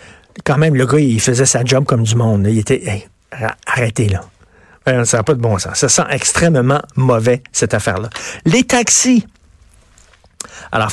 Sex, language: male, French